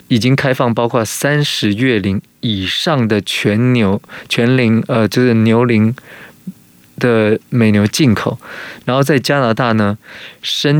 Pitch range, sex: 110-130 Hz, male